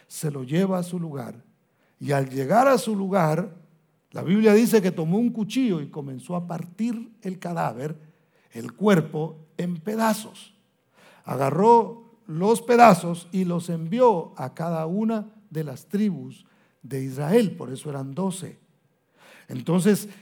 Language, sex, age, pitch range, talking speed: Spanish, male, 50-69, 165-215 Hz, 140 wpm